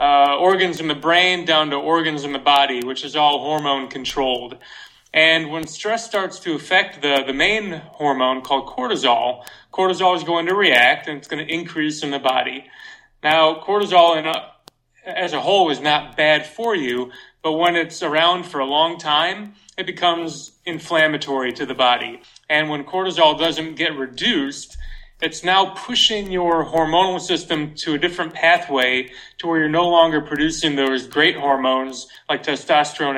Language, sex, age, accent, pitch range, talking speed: English, male, 30-49, American, 135-170 Hz, 165 wpm